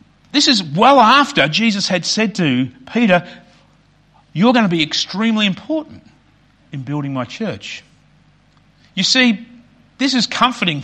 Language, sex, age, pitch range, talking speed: English, male, 50-69, 140-205 Hz, 135 wpm